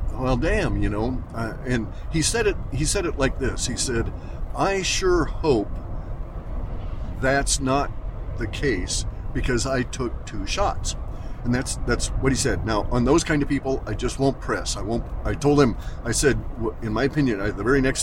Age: 50-69